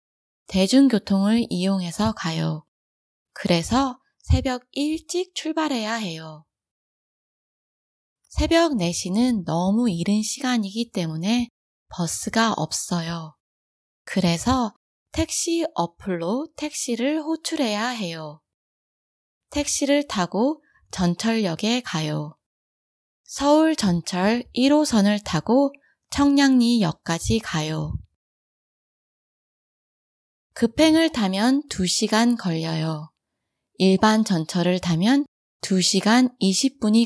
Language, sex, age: Korean, female, 20-39